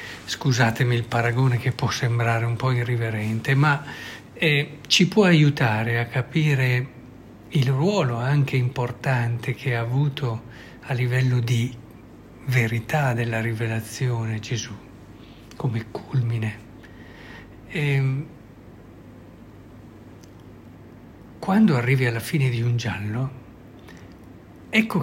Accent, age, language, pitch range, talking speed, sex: native, 60-79, Italian, 115-160 Hz, 95 wpm, male